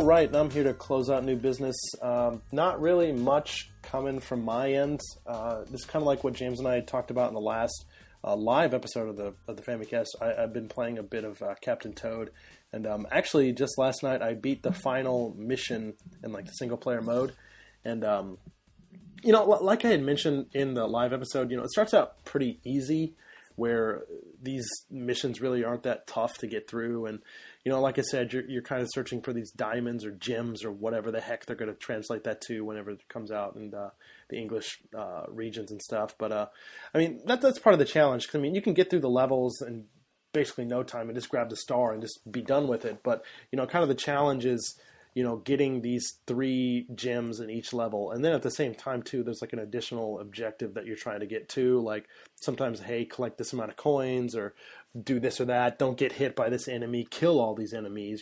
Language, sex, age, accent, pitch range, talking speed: English, male, 20-39, American, 115-135 Hz, 235 wpm